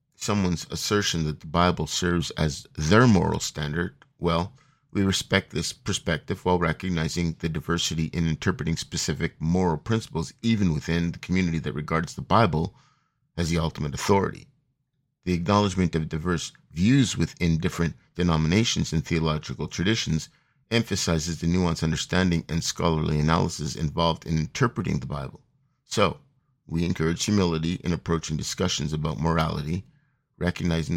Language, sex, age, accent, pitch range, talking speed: English, male, 50-69, American, 80-110 Hz, 135 wpm